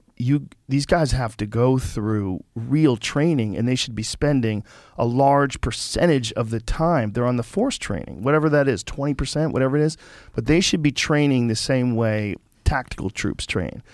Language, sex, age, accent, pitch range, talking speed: English, male, 40-59, American, 110-140 Hz, 185 wpm